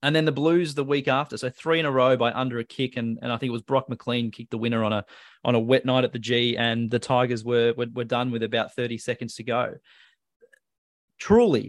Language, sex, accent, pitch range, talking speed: English, male, Australian, 120-145 Hz, 255 wpm